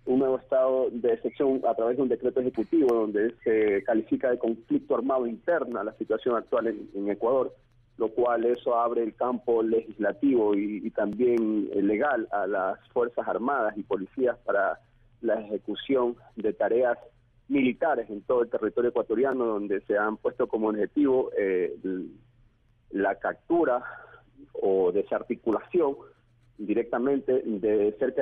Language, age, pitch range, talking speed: Spanish, 40-59, 115-155 Hz, 140 wpm